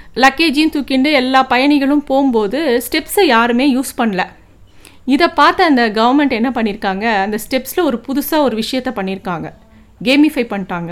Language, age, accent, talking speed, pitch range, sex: Tamil, 50-69, native, 130 wpm, 230-310 Hz, female